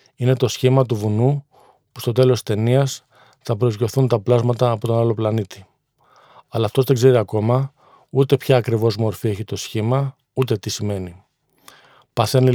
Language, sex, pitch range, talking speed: Greek, male, 115-130 Hz, 160 wpm